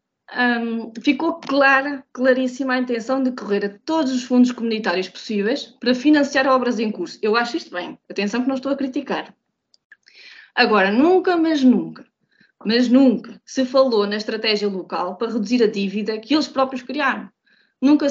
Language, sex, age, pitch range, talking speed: Portuguese, female, 20-39, 215-275 Hz, 160 wpm